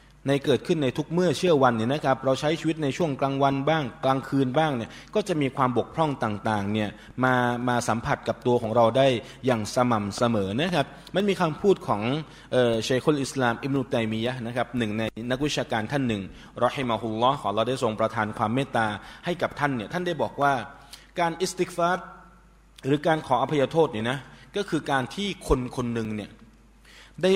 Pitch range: 120-150 Hz